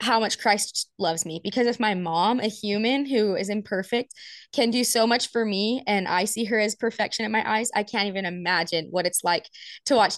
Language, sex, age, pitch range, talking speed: English, female, 20-39, 195-240 Hz, 225 wpm